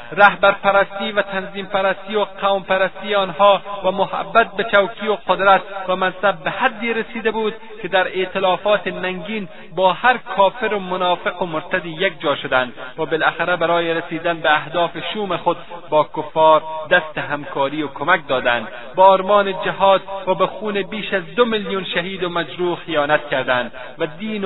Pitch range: 165-200 Hz